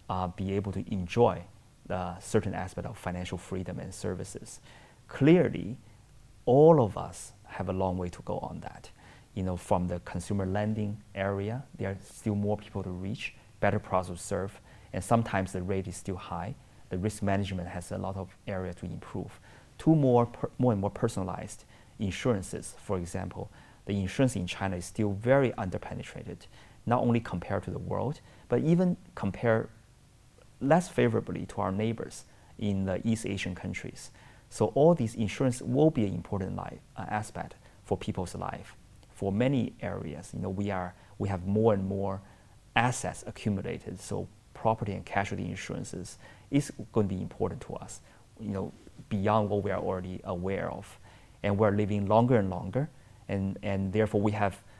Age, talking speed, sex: 30-49, 170 wpm, male